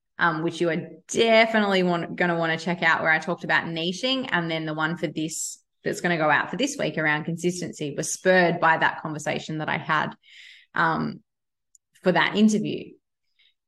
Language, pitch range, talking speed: English, 180-235 Hz, 200 wpm